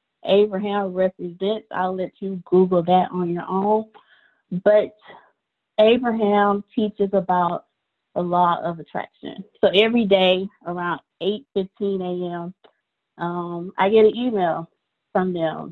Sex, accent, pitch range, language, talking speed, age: female, American, 175-210 Hz, English, 120 wpm, 20-39